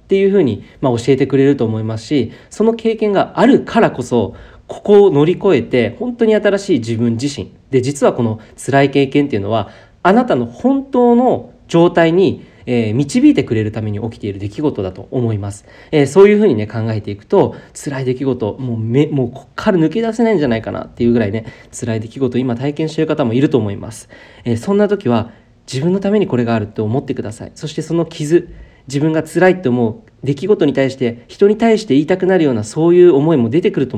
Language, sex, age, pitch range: Japanese, male, 40-59, 115-185 Hz